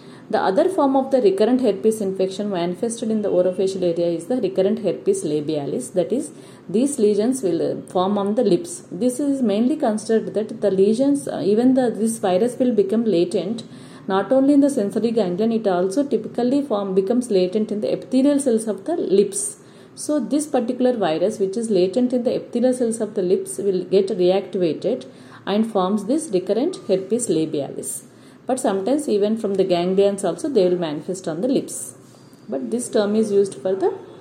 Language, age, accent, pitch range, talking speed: English, 40-59, Indian, 190-250 Hz, 180 wpm